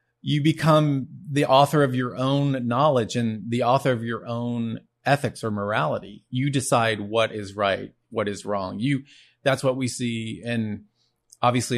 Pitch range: 105-125 Hz